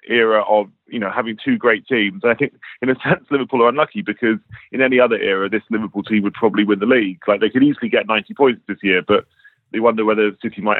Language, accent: English, British